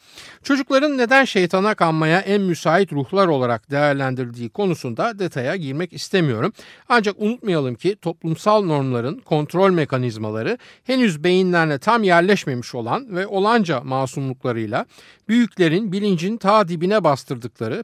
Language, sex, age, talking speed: Turkish, male, 50-69, 110 wpm